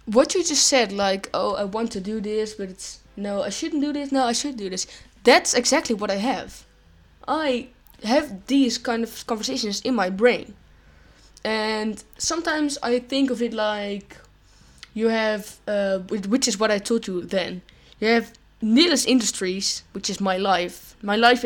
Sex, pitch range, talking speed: female, 200-245 Hz, 180 wpm